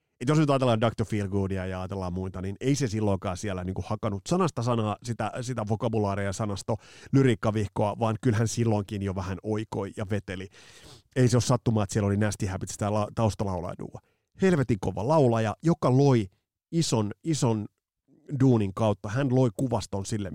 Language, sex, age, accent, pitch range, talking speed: Finnish, male, 30-49, native, 100-130 Hz, 160 wpm